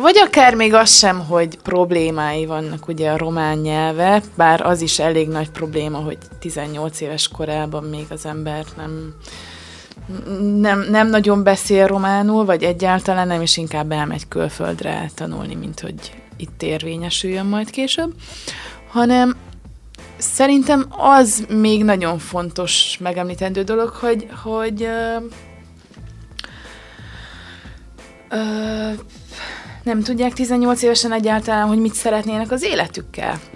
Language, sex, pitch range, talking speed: Hungarian, female, 155-215 Hz, 115 wpm